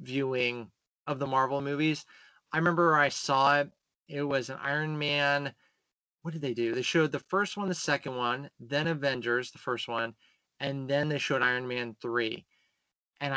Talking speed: 180 wpm